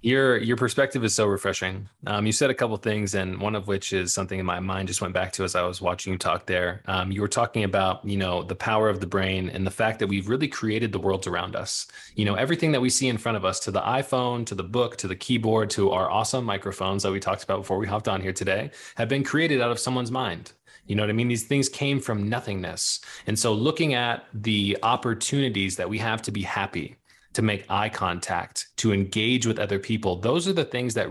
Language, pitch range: English, 95-115 Hz